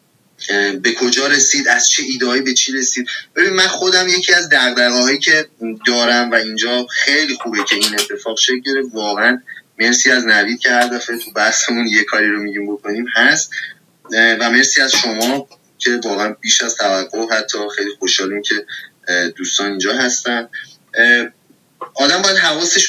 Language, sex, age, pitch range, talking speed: Persian, male, 20-39, 115-145 Hz, 155 wpm